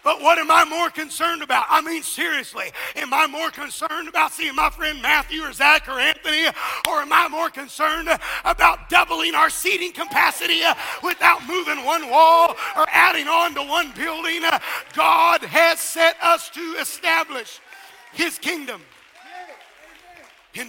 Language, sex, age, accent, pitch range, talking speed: English, male, 50-69, American, 245-320 Hz, 150 wpm